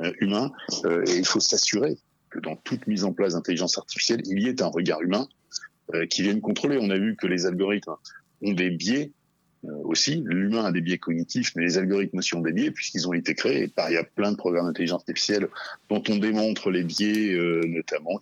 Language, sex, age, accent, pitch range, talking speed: French, male, 50-69, French, 95-150 Hz, 210 wpm